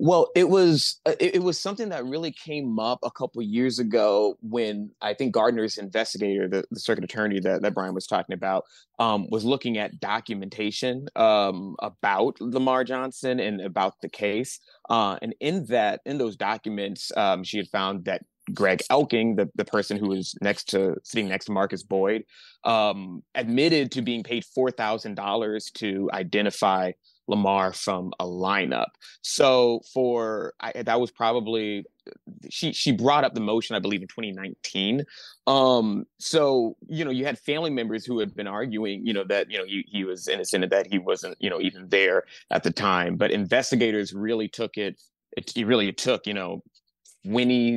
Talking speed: 180 wpm